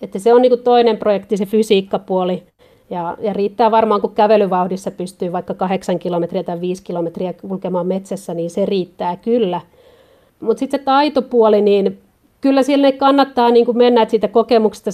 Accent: native